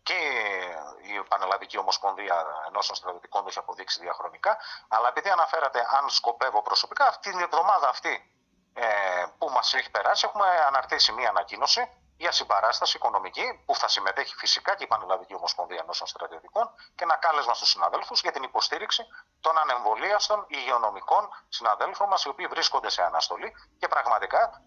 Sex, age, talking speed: male, 30-49, 150 wpm